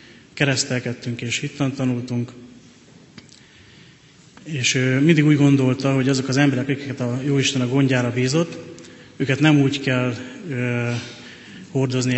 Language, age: Hungarian, 30-49